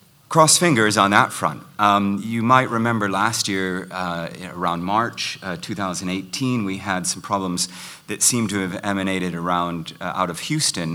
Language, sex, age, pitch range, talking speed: English, male, 30-49, 90-105 Hz, 165 wpm